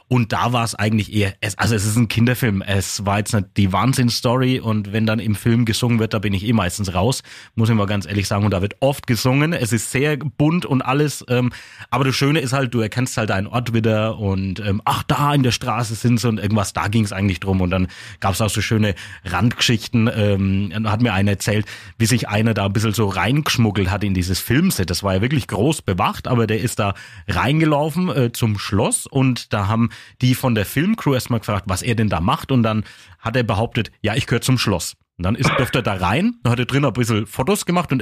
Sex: male